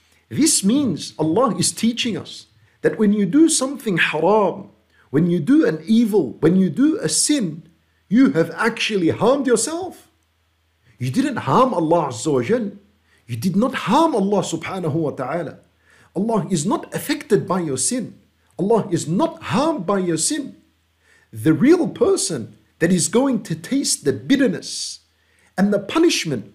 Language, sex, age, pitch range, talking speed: English, male, 50-69, 135-215 Hz, 140 wpm